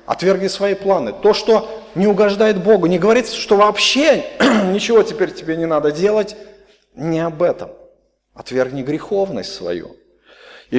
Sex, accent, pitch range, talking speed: male, native, 170-240 Hz, 145 wpm